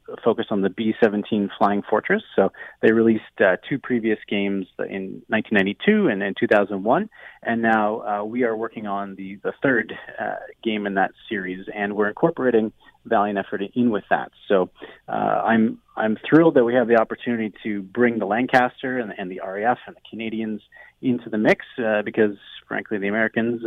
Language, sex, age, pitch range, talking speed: English, male, 30-49, 105-125 Hz, 175 wpm